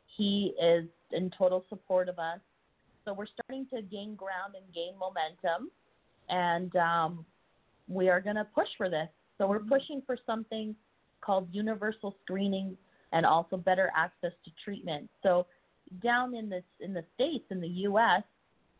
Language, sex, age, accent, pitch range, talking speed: English, female, 30-49, American, 165-200 Hz, 155 wpm